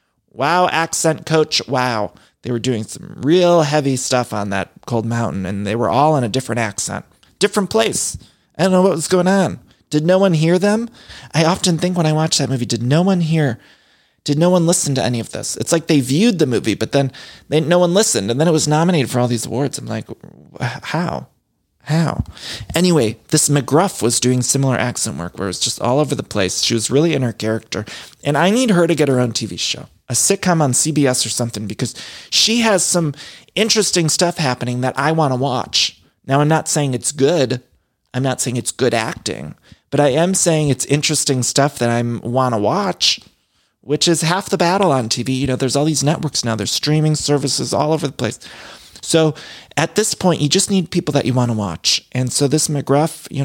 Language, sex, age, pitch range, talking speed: English, male, 30-49, 120-165 Hz, 220 wpm